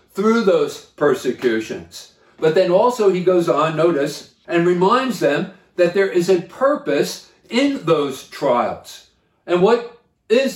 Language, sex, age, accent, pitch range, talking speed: English, male, 50-69, American, 150-195 Hz, 135 wpm